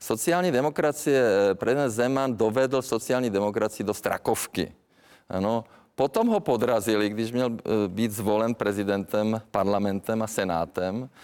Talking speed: 110 wpm